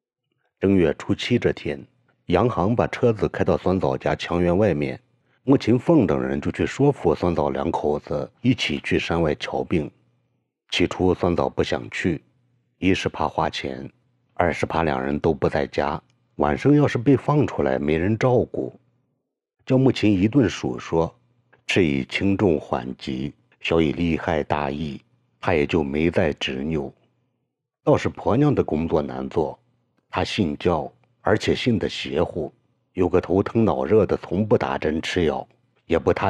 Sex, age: male, 60-79